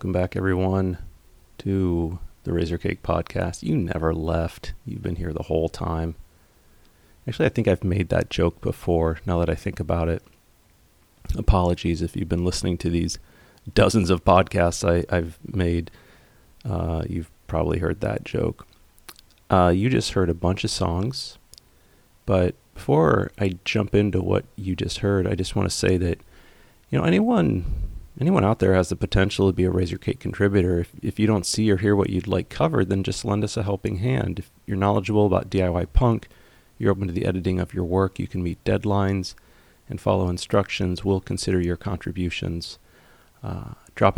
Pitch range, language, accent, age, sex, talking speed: 90-105 Hz, English, American, 30-49, male, 180 wpm